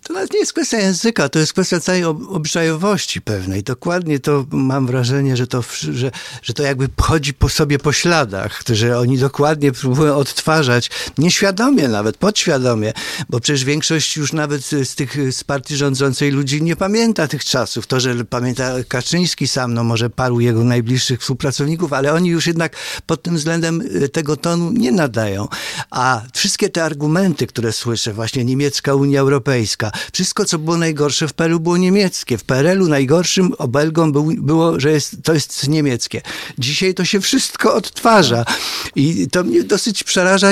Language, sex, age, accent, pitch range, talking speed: English, male, 50-69, Polish, 130-175 Hz, 165 wpm